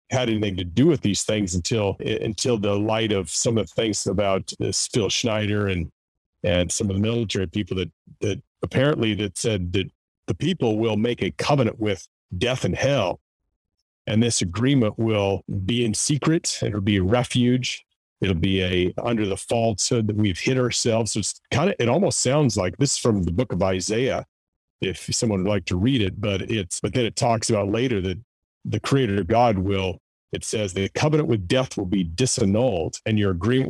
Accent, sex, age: American, male, 40-59